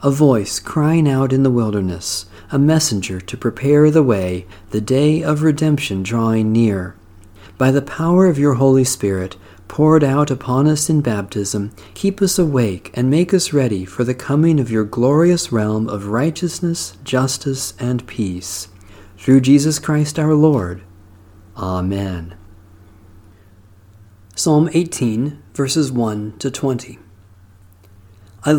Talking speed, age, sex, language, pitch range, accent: 135 wpm, 40-59, male, English, 100-145 Hz, American